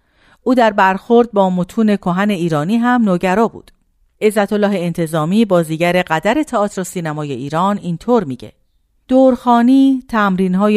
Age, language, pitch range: 50-69, Persian, 165-220 Hz